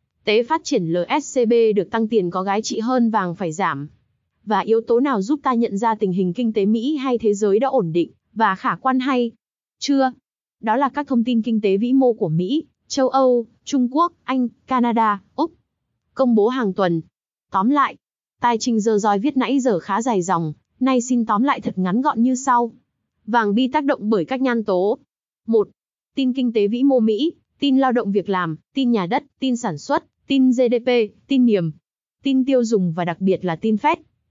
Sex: female